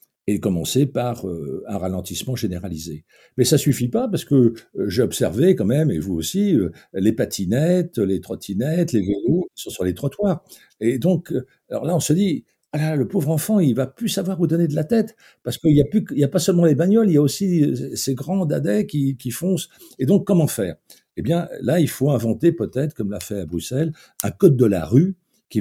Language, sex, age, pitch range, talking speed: French, male, 60-79, 110-170 Hz, 220 wpm